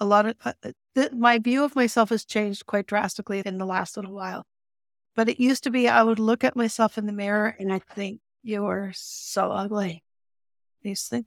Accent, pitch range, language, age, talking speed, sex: American, 205-245 Hz, English, 50-69, 225 wpm, female